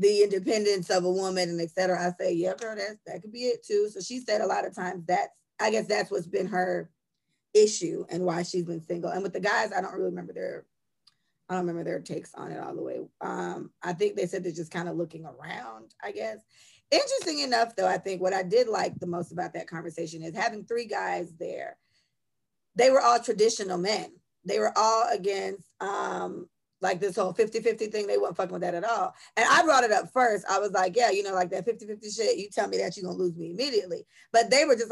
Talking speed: 240 wpm